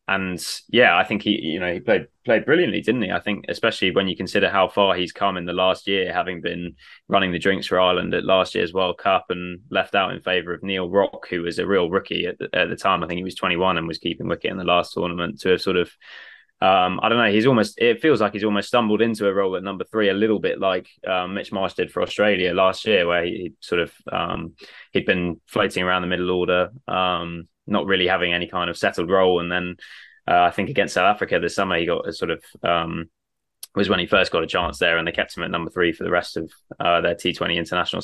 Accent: British